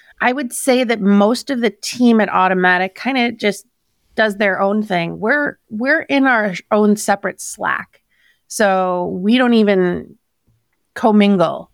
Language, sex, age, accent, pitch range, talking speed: English, female, 30-49, American, 190-230 Hz, 150 wpm